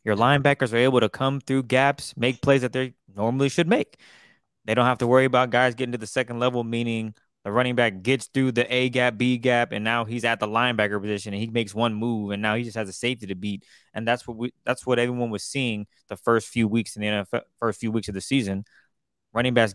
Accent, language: American, English